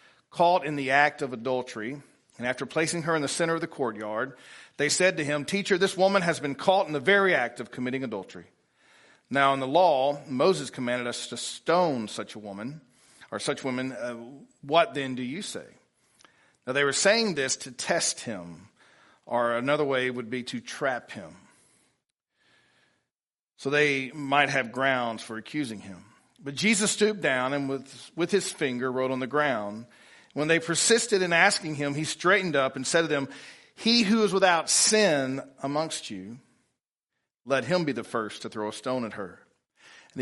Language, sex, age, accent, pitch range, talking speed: English, male, 40-59, American, 125-165 Hz, 185 wpm